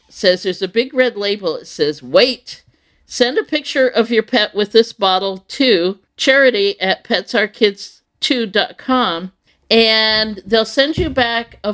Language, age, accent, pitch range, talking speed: English, 50-69, American, 180-240 Hz, 145 wpm